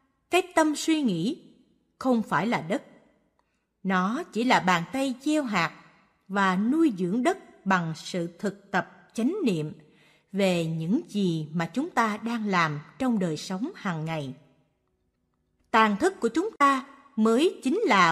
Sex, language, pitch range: female, Vietnamese, 170-265 Hz